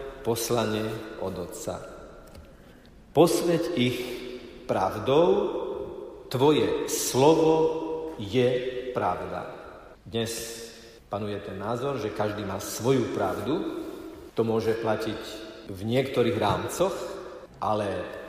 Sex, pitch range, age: male, 115-175 Hz, 50-69